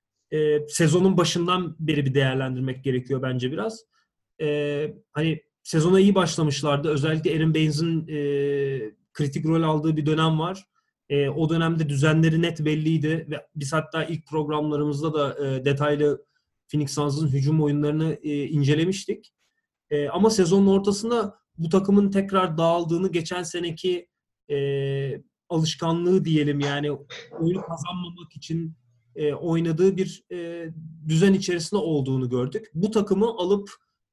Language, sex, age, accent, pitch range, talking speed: Turkish, male, 30-49, native, 150-180 Hz, 120 wpm